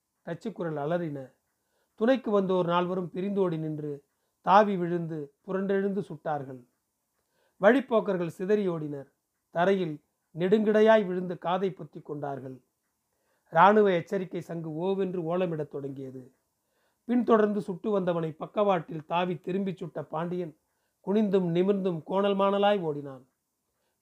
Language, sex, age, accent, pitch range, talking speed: Tamil, male, 40-59, native, 160-205 Hz, 90 wpm